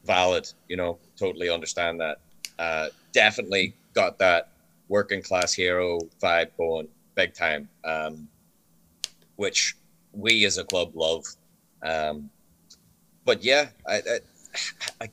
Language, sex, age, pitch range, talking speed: English, male, 30-49, 85-115 Hz, 115 wpm